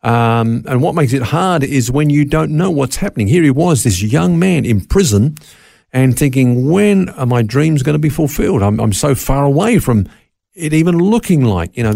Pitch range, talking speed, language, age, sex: 105-155 Hz, 215 wpm, English, 50-69, male